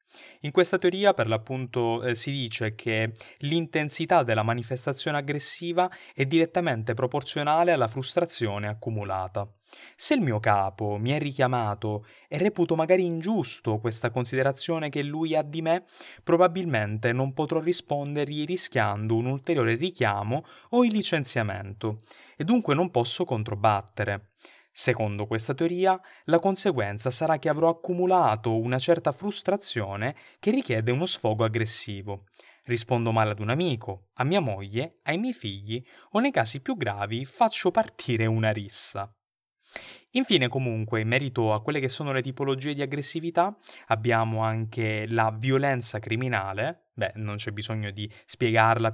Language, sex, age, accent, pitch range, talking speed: Italian, male, 20-39, native, 110-165 Hz, 140 wpm